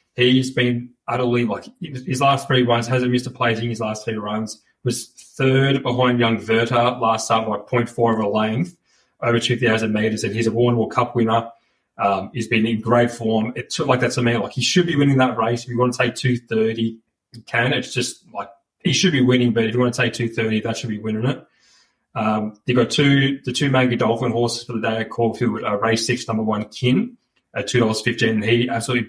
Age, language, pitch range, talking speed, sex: 20-39, English, 110-125 Hz, 235 wpm, male